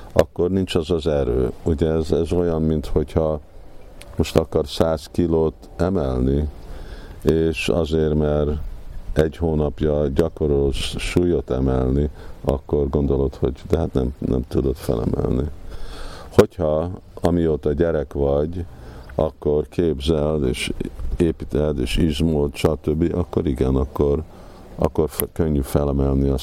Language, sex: Hungarian, male